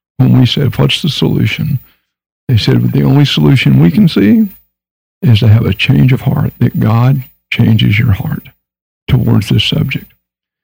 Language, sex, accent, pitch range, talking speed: English, male, American, 110-155 Hz, 165 wpm